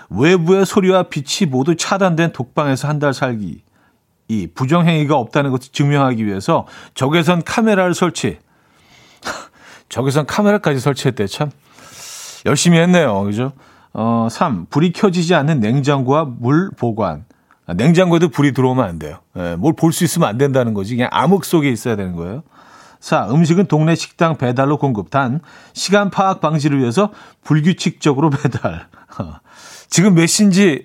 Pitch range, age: 130-175 Hz, 40-59